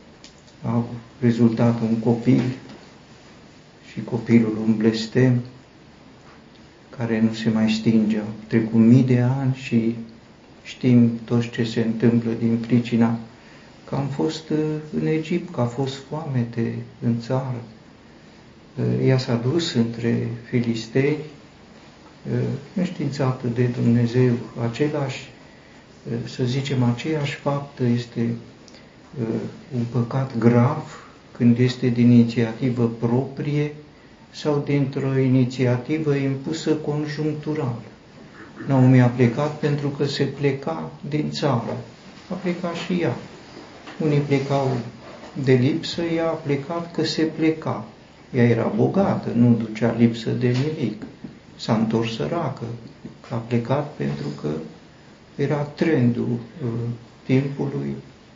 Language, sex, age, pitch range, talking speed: Romanian, male, 50-69, 115-140 Hz, 110 wpm